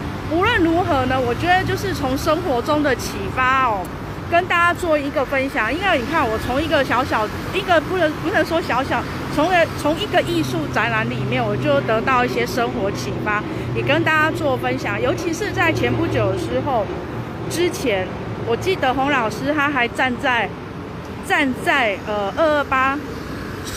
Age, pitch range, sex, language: 30-49, 230-320 Hz, female, Chinese